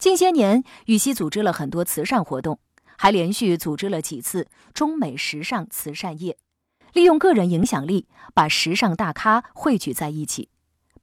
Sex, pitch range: female, 155-230 Hz